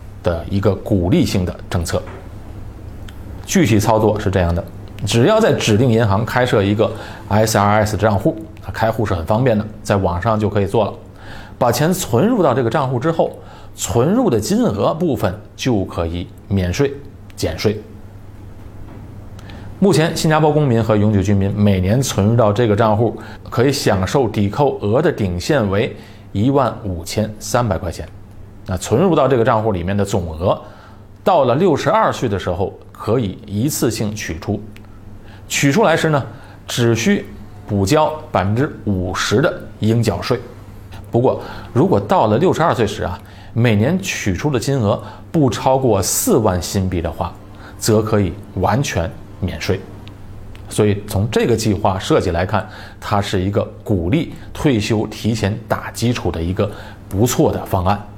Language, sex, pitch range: Chinese, male, 100-115 Hz